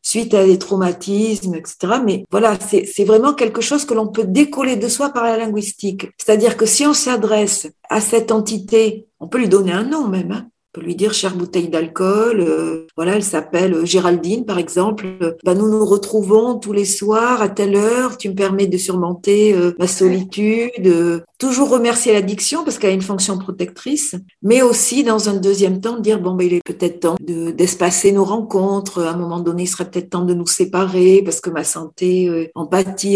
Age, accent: 50-69, French